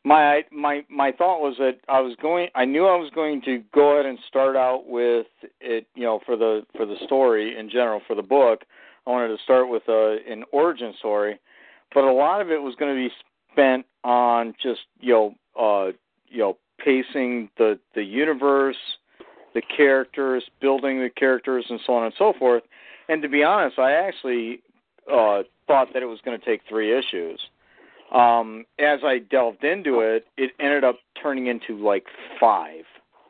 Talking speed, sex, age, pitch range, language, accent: 185 wpm, male, 50-69, 115-140 Hz, English, American